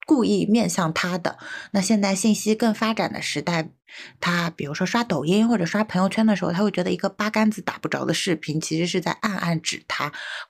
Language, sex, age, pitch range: Chinese, female, 20-39, 155-215 Hz